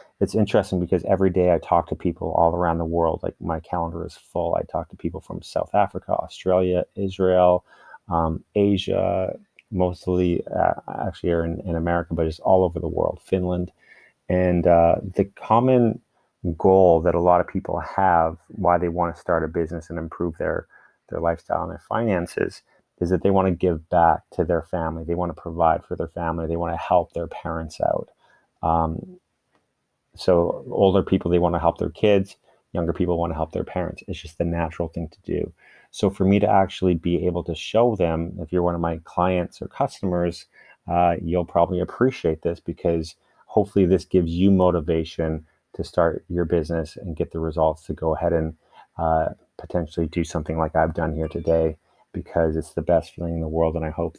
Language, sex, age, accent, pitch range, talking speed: English, male, 30-49, American, 80-90 Hz, 195 wpm